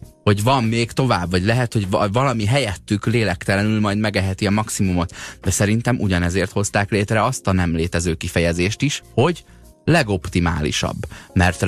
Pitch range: 90-115 Hz